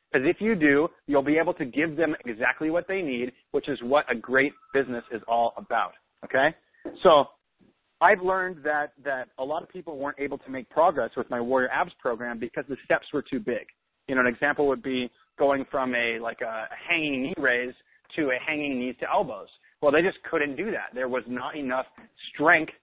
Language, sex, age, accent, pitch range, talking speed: English, male, 30-49, American, 125-160 Hz, 215 wpm